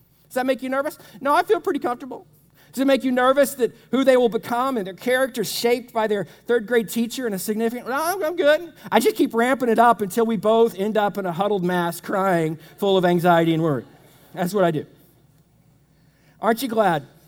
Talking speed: 220 wpm